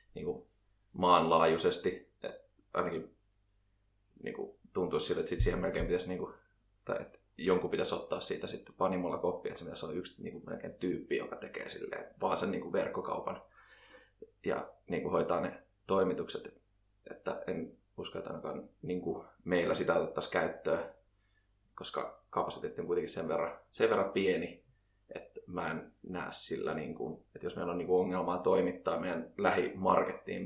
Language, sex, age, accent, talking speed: Finnish, male, 20-39, native, 150 wpm